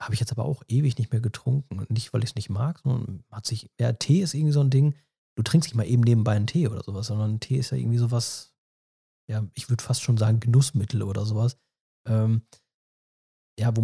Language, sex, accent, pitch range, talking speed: German, male, German, 110-125 Hz, 235 wpm